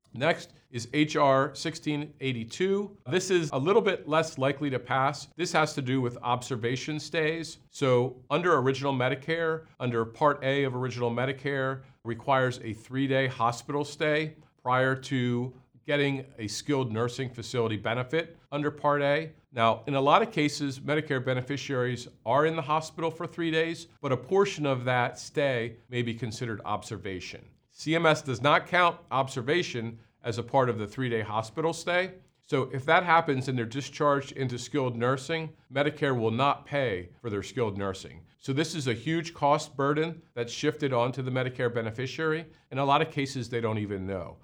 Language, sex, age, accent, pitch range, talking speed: English, male, 50-69, American, 120-150 Hz, 165 wpm